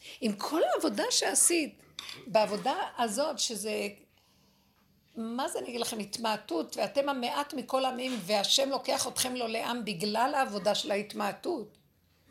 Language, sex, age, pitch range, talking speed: Hebrew, female, 60-79, 210-265 Hz, 130 wpm